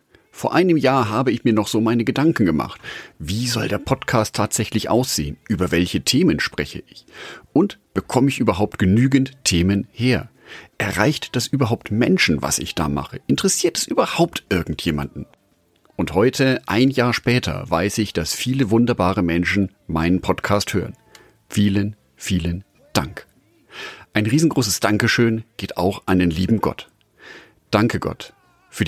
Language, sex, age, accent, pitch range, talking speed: German, male, 40-59, German, 90-125 Hz, 145 wpm